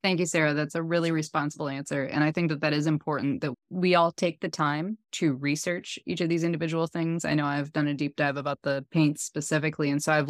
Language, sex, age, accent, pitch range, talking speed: English, female, 20-39, American, 145-160 Hz, 245 wpm